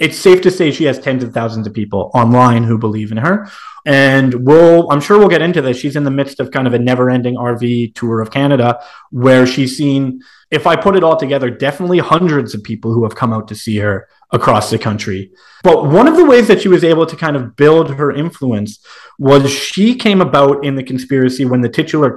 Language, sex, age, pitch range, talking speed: English, male, 30-49, 120-155 Hz, 235 wpm